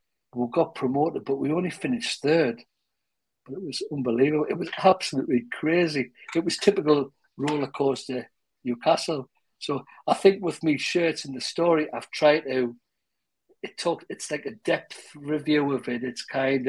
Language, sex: English, male